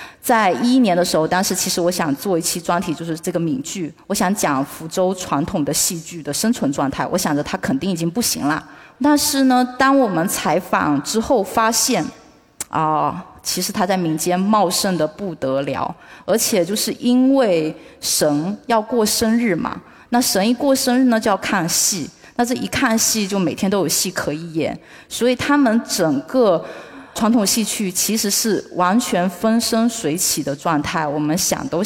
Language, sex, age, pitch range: Chinese, female, 20-39, 170-235 Hz